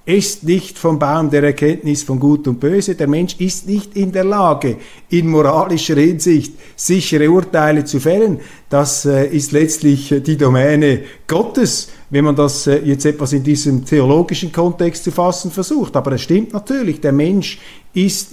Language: German